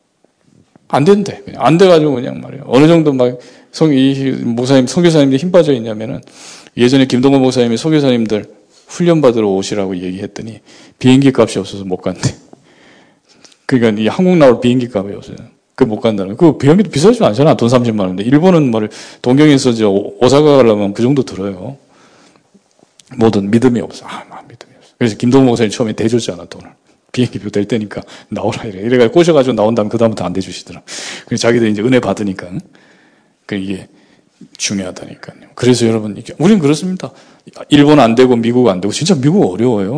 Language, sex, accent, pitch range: Korean, male, native, 105-140 Hz